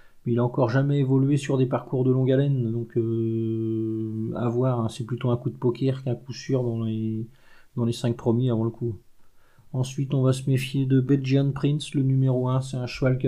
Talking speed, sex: 220 wpm, male